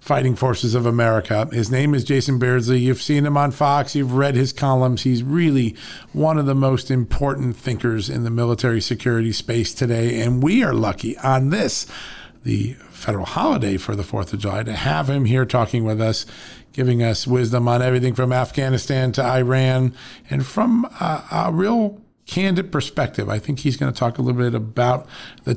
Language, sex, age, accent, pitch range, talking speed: English, male, 50-69, American, 115-135 Hz, 185 wpm